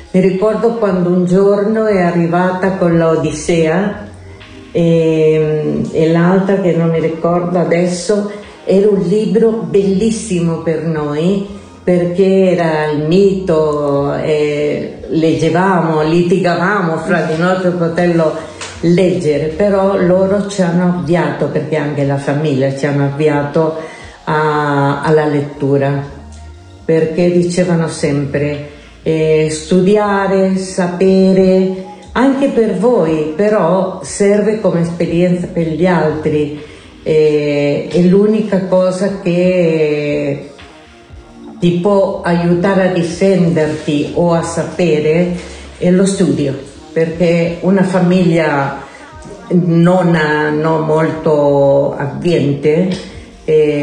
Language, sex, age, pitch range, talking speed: Italian, female, 50-69, 155-185 Hz, 105 wpm